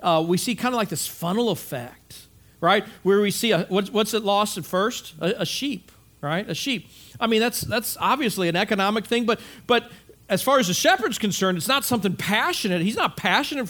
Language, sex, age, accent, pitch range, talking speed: English, male, 50-69, American, 175-230 Hz, 215 wpm